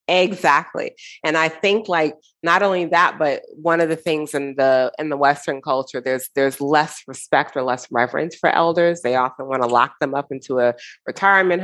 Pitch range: 135-175 Hz